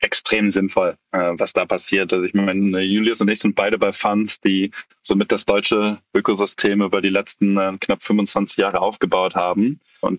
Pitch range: 95-105 Hz